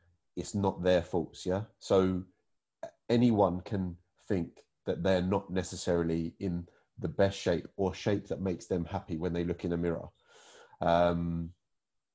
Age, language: 30-49, English